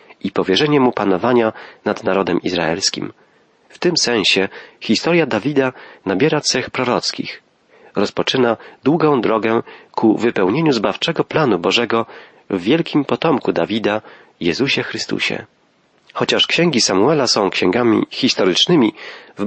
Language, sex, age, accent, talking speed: Polish, male, 40-59, native, 110 wpm